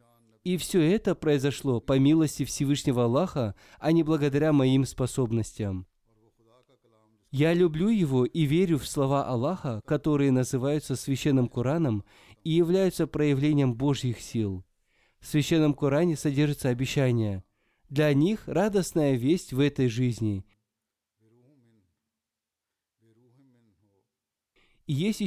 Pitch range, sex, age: 115-160 Hz, male, 20-39